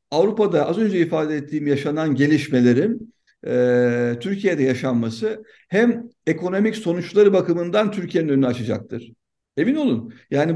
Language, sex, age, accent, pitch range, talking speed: Turkish, male, 50-69, native, 140-200 Hz, 115 wpm